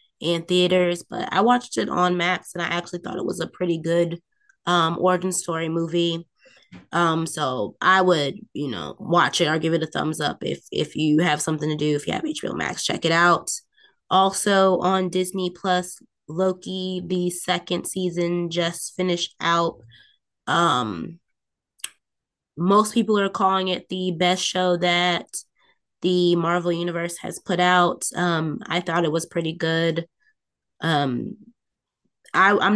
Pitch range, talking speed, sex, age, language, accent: 165-185 Hz, 160 wpm, female, 20-39, English, American